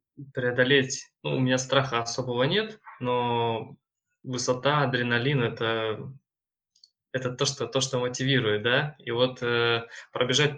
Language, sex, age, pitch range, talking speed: Russian, male, 20-39, 120-130 Hz, 120 wpm